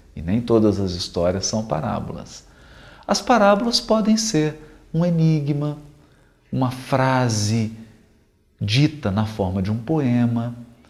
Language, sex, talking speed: Portuguese, male, 115 wpm